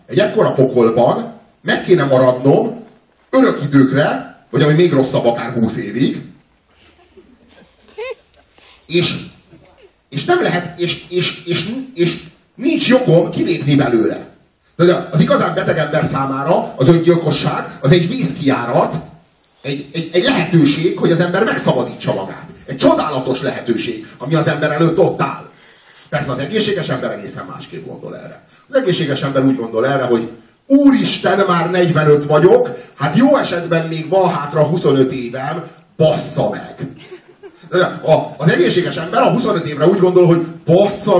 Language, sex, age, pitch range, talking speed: Hungarian, male, 30-49, 140-180 Hz, 140 wpm